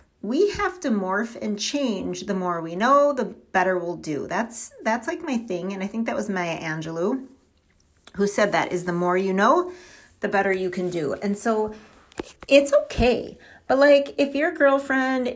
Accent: American